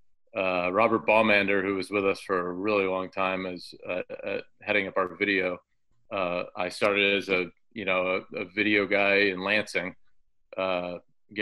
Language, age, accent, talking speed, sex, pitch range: English, 30-49, American, 175 wpm, male, 95-110 Hz